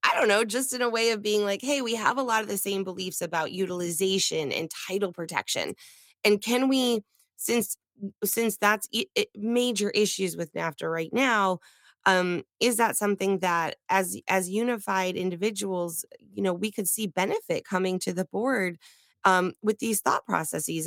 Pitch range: 170-210 Hz